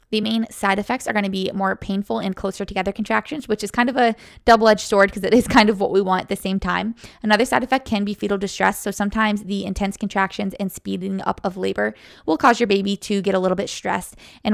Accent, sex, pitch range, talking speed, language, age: American, female, 195-225 Hz, 250 wpm, English, 20-39